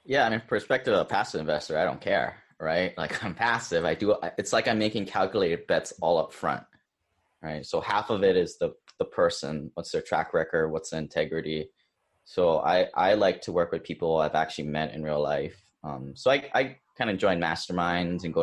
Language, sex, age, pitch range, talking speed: English, male, 20-39, 80-110 Hz, 215 wpm